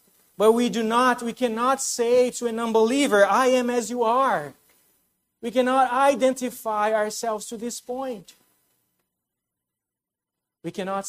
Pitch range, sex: 155-215 Hz, male